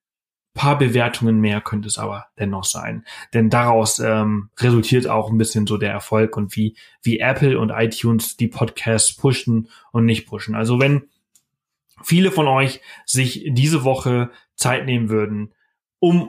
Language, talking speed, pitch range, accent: German, 160 wpm, 110-145 Hz, German